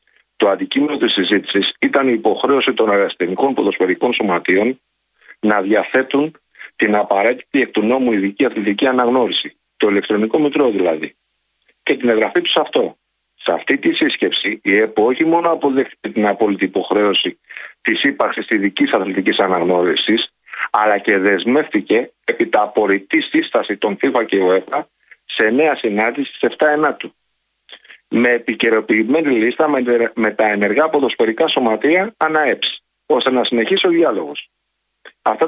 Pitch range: 110-160 Hz